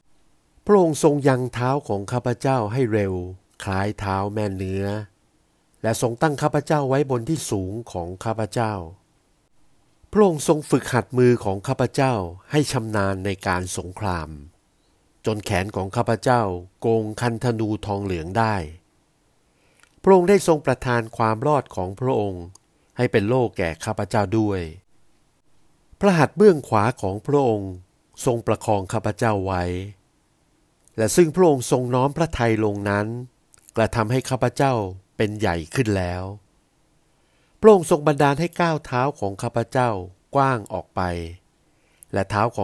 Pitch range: 100-135 Hz